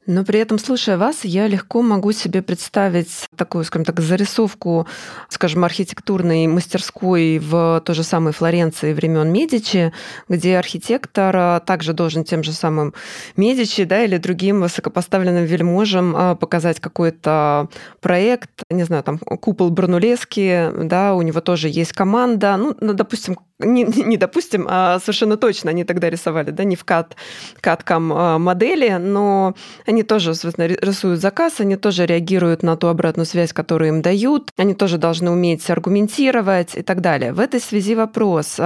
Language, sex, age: Russian, female, 20-39